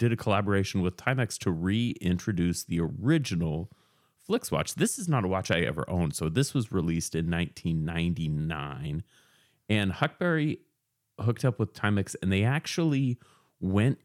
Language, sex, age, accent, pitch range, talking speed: English, male, 30-49, American, 85-125 Hz, 150 wpm